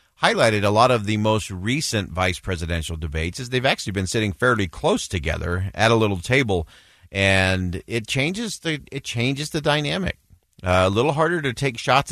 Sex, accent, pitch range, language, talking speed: male, American, 90-125 Hz, English, 185 wpm